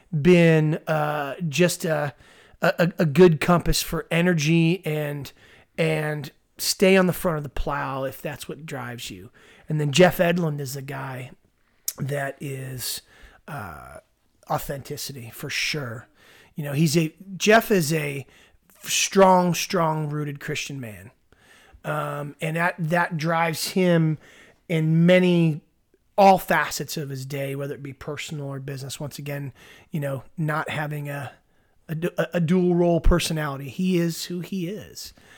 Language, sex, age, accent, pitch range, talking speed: English, male, 30-49, American, 145-175 Hz, 145 wpm